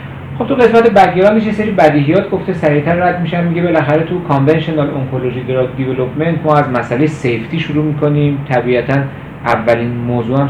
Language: Persian